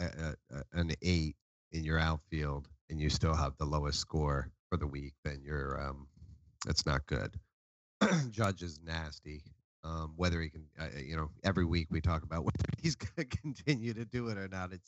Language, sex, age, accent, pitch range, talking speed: English, male, 30-49, American, 80-95 Hz, 190 wpm